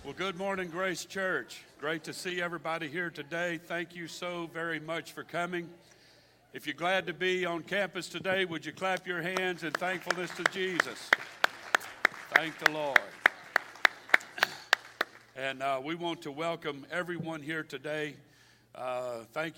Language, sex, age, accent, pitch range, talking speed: English, male, 60-79, American, 135-160 Hz, 150 wpm